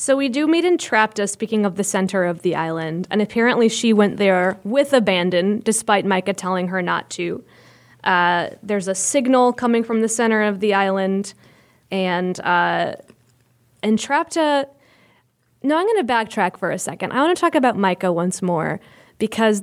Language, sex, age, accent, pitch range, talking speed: English, female, 20-39, American, 185-225 Hz, 170 wpm